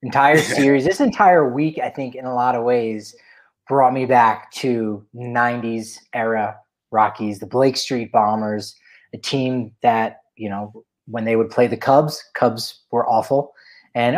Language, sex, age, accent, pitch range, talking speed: English, male, 30-49, American, 120-160 Hz, 160 wpm